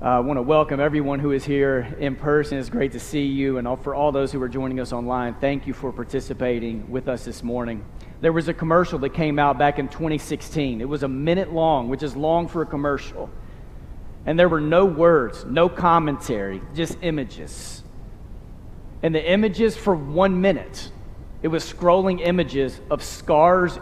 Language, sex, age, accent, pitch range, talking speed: English, male, 40-59, American, 135-185 Hz, 185 wpm